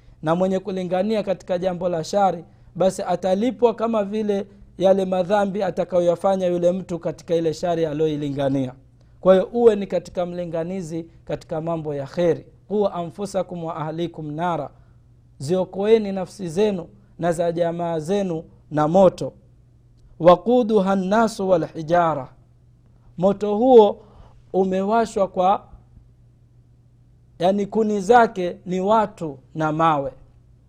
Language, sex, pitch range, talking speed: Swahili, male, 130-200 Hz, 115 wpm